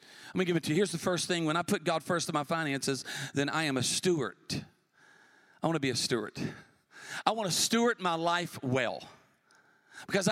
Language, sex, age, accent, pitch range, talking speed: English, male, 40-59, American, 180-260 Hz, 220 wpm